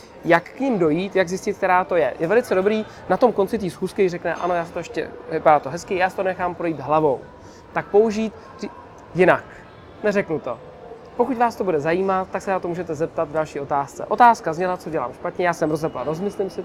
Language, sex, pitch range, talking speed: Czech, male, 165-195 Hz, 220 wpm